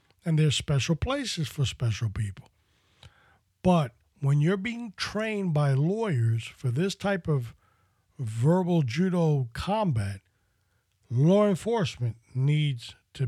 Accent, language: American, English